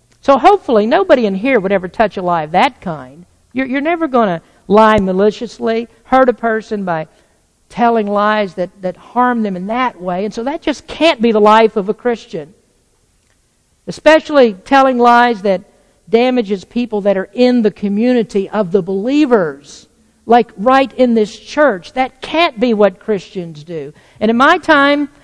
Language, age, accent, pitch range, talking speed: English, 60-79, American, 210-285 Hz, 175 wpm